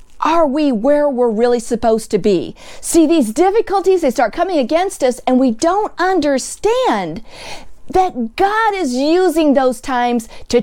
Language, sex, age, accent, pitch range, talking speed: English, female, 50-69, American, 240-345 Hz, 150 wpm